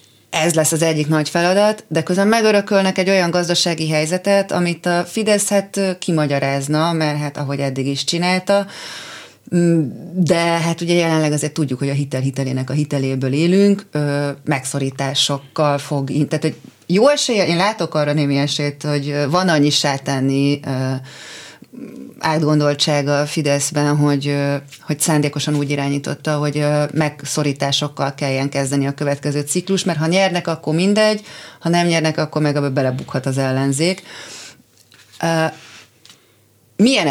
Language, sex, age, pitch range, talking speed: Hungarian, female, 30-49, 145-175 Hz, 130 wpm